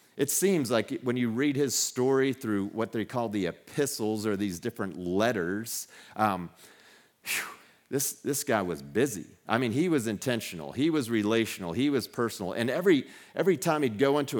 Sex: male